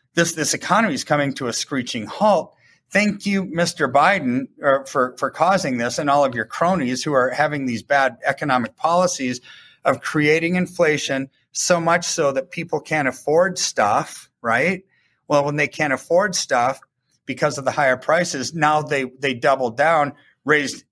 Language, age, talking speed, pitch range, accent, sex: English, 30-49, 165 wpm, 125-160 Hz, American, male